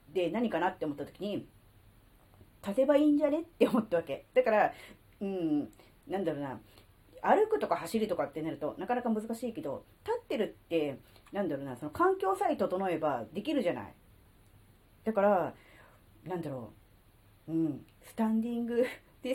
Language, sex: Japanese, female